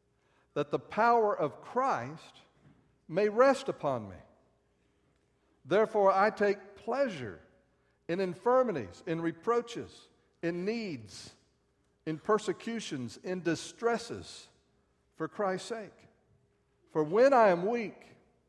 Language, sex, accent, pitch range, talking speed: English, male, American, 125-165 Hz, 100 wpm